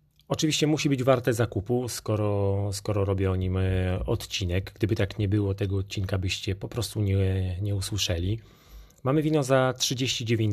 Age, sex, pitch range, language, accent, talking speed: 30-49, male, 100-120 Hz, Polish, native, 155 wpm